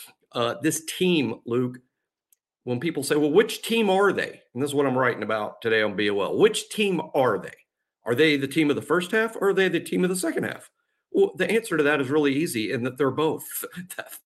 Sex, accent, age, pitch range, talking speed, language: male, American, 50-69, 125-160 Hz, 230 wpm, English